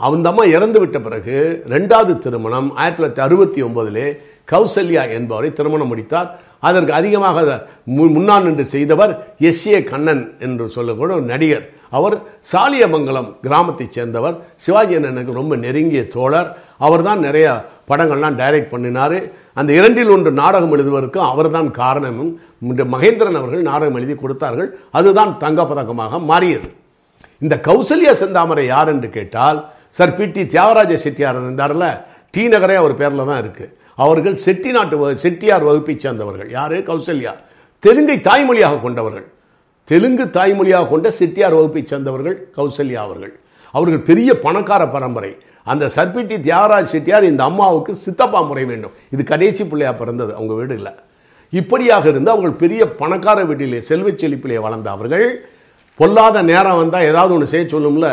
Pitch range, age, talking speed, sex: 135-185 Hz, 50-69, 125 wpm, male